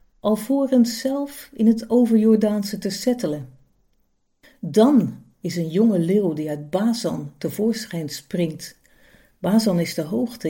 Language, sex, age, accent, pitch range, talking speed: Dutch, female, 50-69, Dutch, 175-230 Hz, 120 wpm